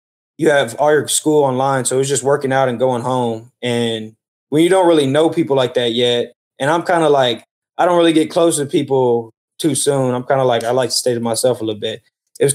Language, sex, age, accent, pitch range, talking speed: English, male, 20-39, American, 120-145 Hz, 260 wpm